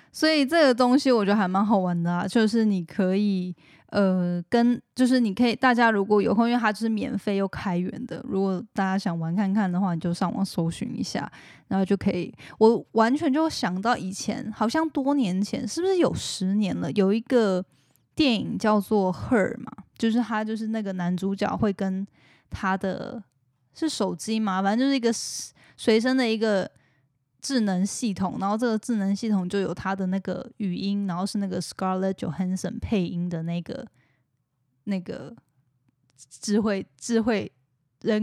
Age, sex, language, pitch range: 10-29, female, Chinese, 190-235 Hz